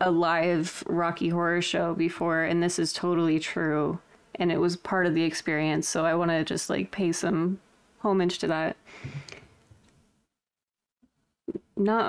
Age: 20-39